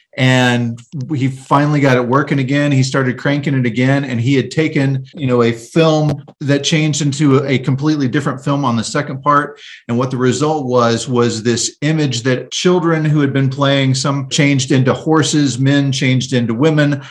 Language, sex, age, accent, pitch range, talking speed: English, male, 40-59, American, 115-140 Hz, 185 wpm